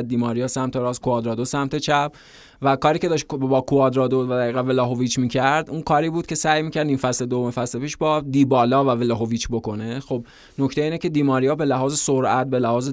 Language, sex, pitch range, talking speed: Persian, male, 125-140 Hz, 200 wpm